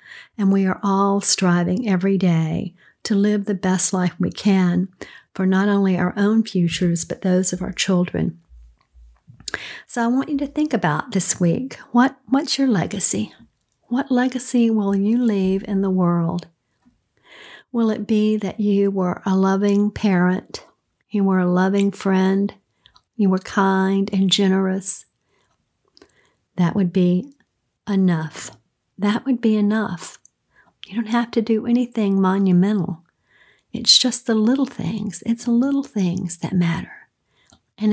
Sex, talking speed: female, 145 wpm